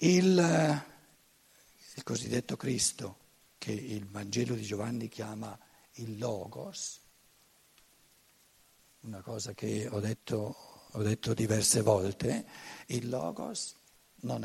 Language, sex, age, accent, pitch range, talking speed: Italian, male, 60-79, native, 115-185 Hz, 100 wpm